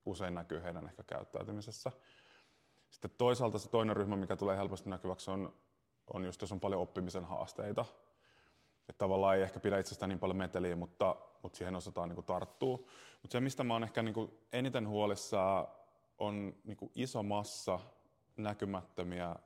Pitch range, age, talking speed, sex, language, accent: 95-110 Hz, 20-39, 165 wpm, male, Finnish, native